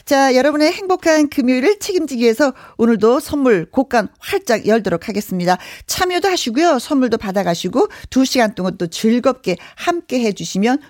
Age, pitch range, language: 40-59, 185-280 Hz, Korean